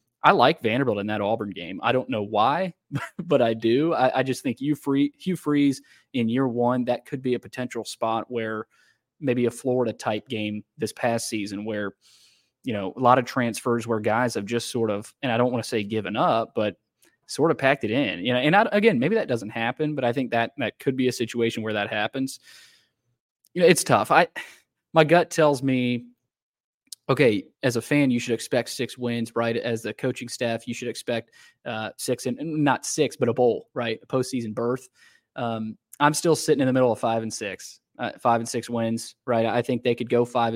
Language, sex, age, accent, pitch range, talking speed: English, male, 20-39, American, 115-135 Hz, 215 wpm